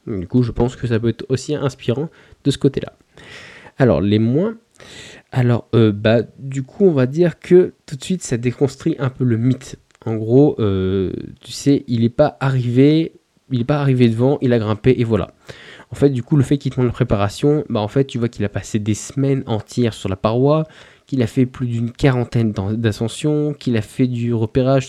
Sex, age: male, 20-39